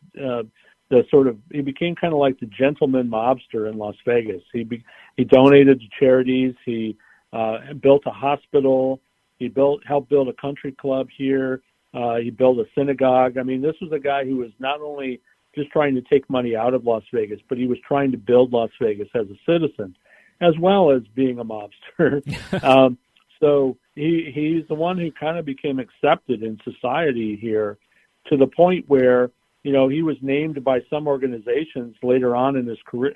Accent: American